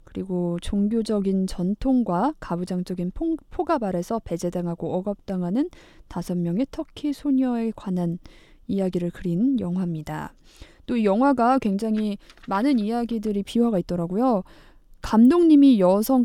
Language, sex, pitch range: Korean, female, 185-260 Hz